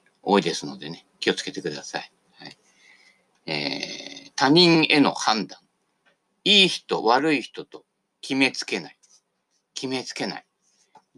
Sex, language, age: male, Japanese, 50-69